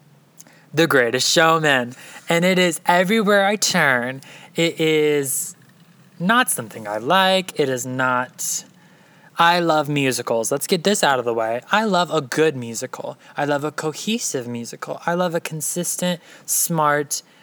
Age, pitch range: 20-39, 145-190 Hz